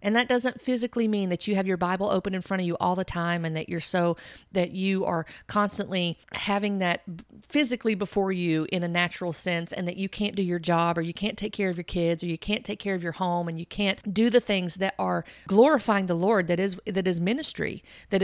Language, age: English, 40-59